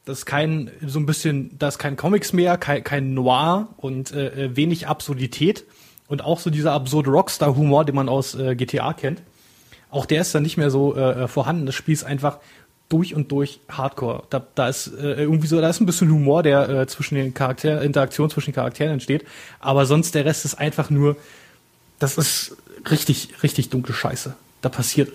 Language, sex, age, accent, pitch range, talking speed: German, male, 20-39, German, 130-150 Hz, 200 wpm